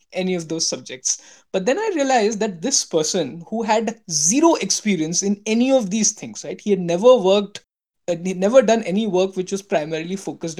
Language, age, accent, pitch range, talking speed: English, 20-39, Indian, 175-235 Hz, 200 wpm